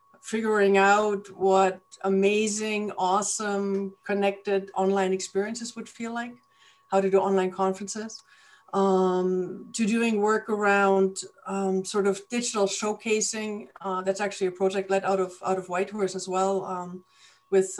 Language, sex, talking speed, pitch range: English, female, 140 wpm, 185-205 Hz